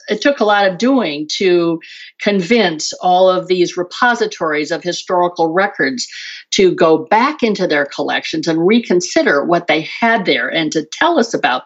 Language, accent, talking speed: English, American, 165 wpm